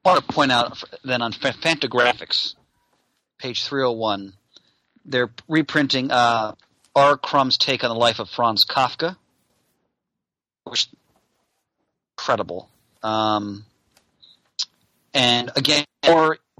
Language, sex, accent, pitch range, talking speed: English, male, American, 115-140 Hz, 100 wpm